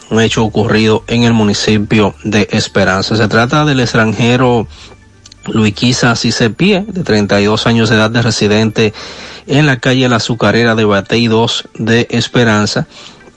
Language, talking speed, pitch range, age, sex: Spanish, 145 wpm, 110-125 Hz, 30-49, male